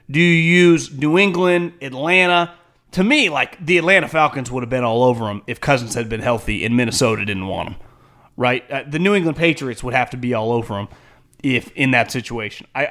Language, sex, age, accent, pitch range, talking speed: English, male, 30-49, American, 130-170 Hz, 215 wpm